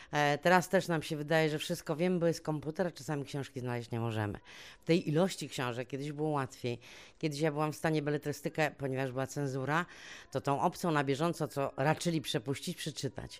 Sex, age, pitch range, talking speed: female, 30-49, 140-170 Hz, 190 wpm